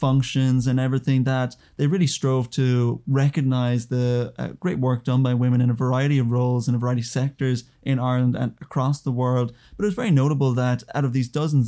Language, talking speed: English, 215 wpm